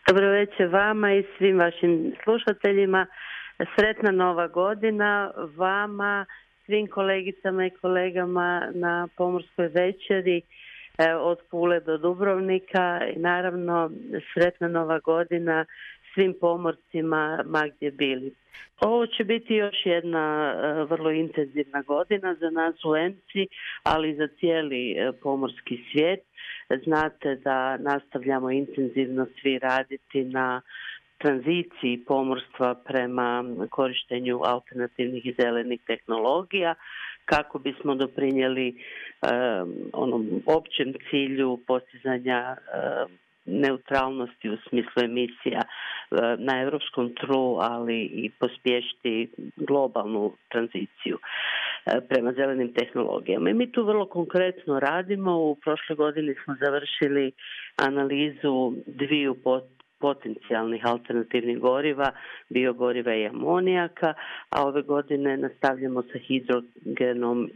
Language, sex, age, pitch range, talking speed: Croatian, female, 50-69, 130-175 Hz, 100 wpm